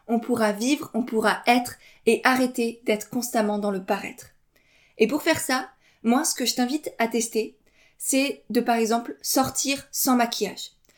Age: 20-39